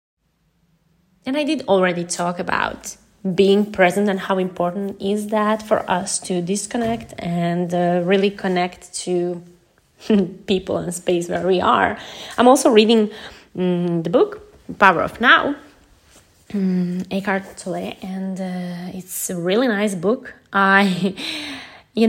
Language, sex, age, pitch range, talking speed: English, female, 20-39, 180-230 Hz, 135 wpm